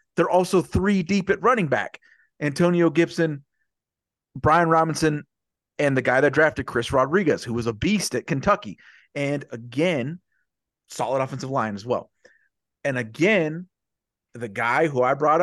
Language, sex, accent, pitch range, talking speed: English, male, American, 120-175 Hz, 150 wpm